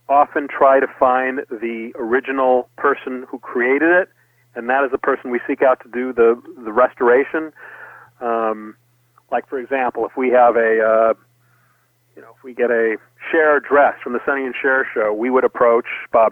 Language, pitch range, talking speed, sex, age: English, 120-135 Hz, 185 wpm, male, 40-59